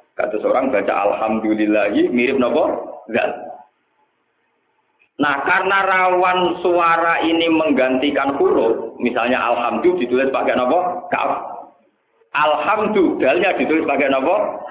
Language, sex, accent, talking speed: Indonesian, male, native, 100 wpm